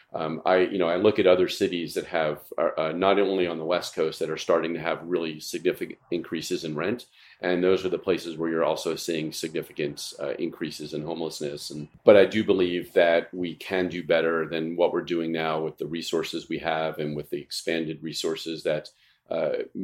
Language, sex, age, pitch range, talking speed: English, male, 40-59, 80-90 Hz, 210 wpm